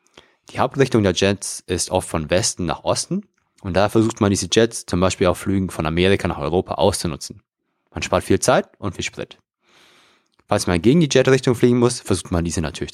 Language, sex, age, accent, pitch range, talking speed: German, male, 30-49, German, 85-115 Hz, 200 wpm